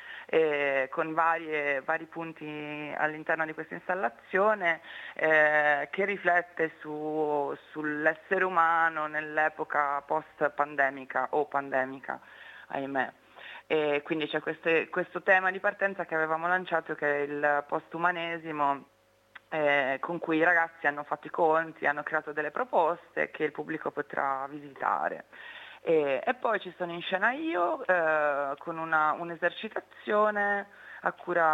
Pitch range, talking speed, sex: 150-175 Hz, 130 wpm, female